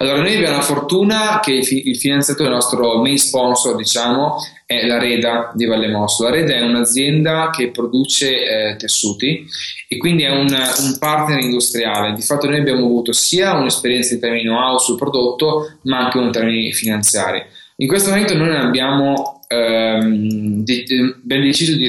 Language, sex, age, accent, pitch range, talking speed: Italian, male, 20-39, native, 115-145 Hz, 160 wpm